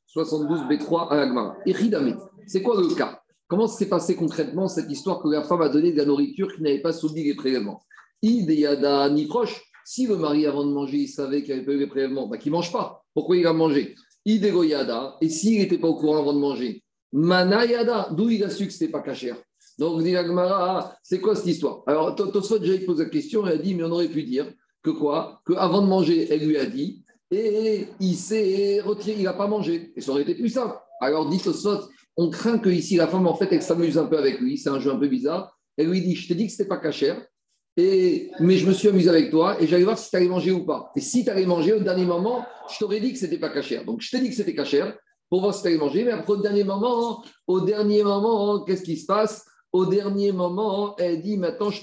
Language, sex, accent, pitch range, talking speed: French, male, French, 155-205 Hz, 250 wpm